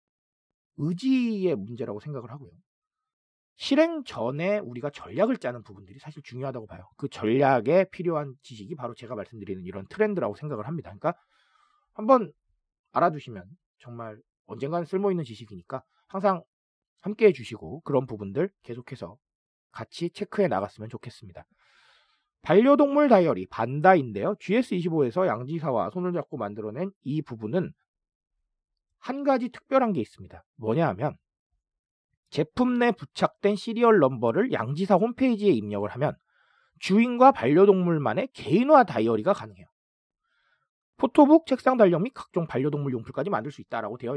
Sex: male